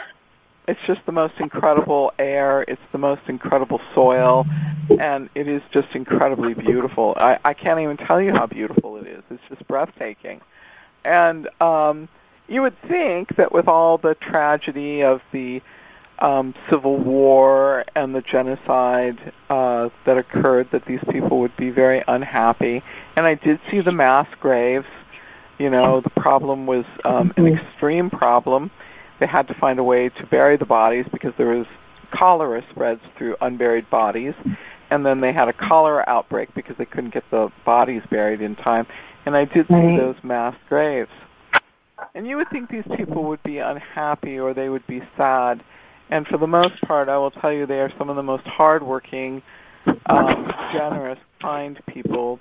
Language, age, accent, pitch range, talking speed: English, 50-69, American, 125-155 Hz, 170 wpm